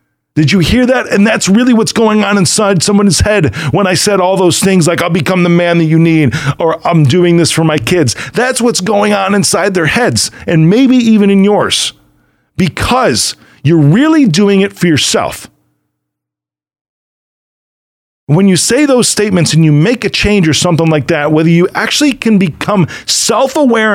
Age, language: 40-59, English